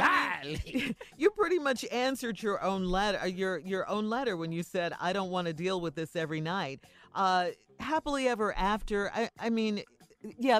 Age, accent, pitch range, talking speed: 40-59, American, 155-210 Hz, 175 wpm